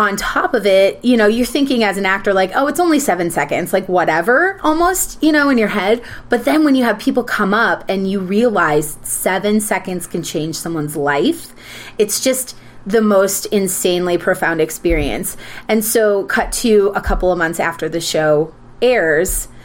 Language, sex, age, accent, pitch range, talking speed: English, female, 30-49, American, 175-225 Hz, 185 wpm